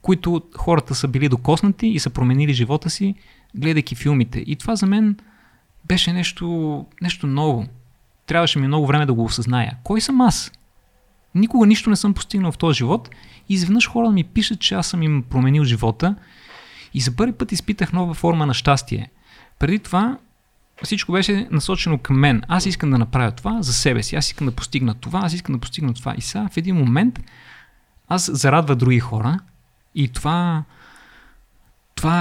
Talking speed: 175 wpm